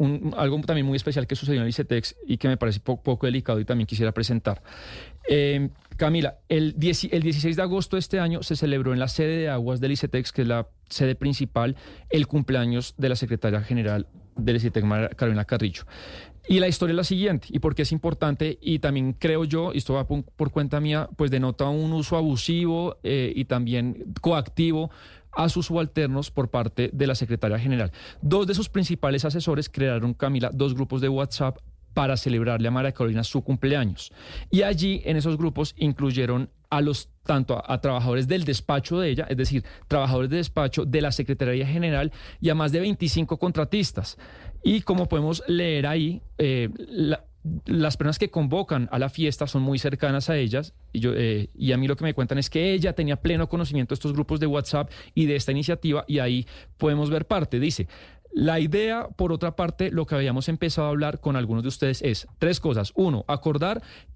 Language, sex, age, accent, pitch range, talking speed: Spanish, male, 30-49, Colombian, 130-160 Hz, 200 wpm